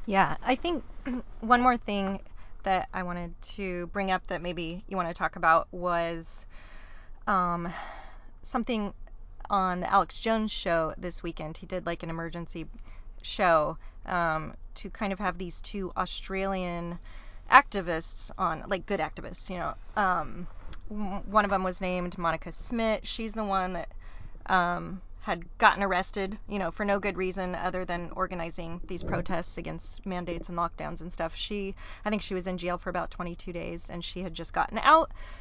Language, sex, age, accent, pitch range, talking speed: English, female, 20-39, American, 170-205 Hz, 170 wpm